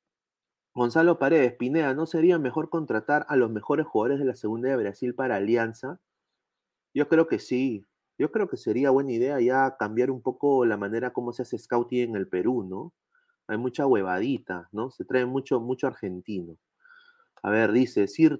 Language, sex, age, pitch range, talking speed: Spanish, male, 30-49, 105-150 Hz, 180 wpm